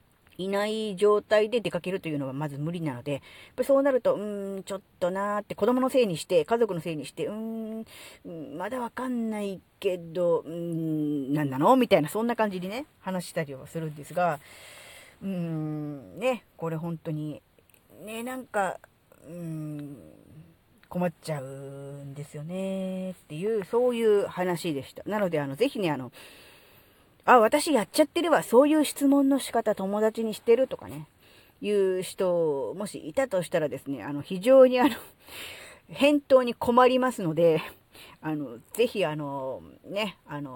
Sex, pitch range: female, 150-230 Hz